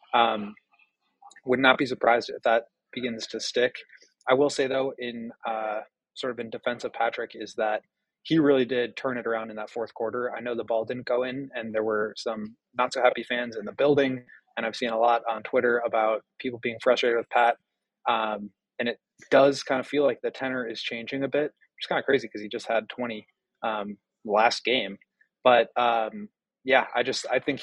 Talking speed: 215 wpm